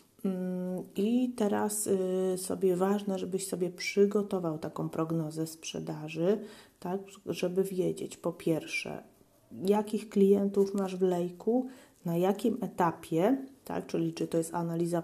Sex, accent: female, native